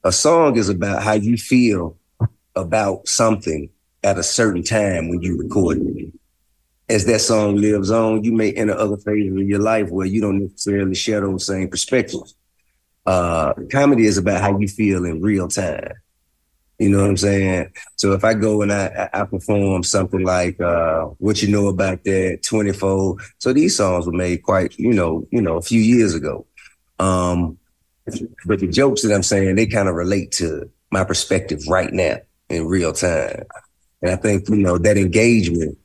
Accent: American